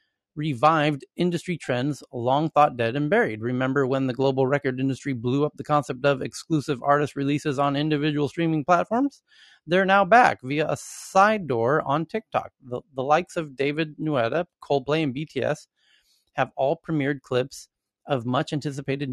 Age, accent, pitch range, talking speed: 30-49, American, 130-155 Hz, 155 wpm